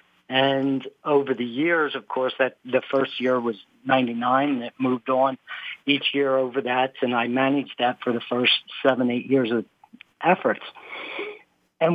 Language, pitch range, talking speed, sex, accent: English, 125-145 Hz, 165 wpm, male, American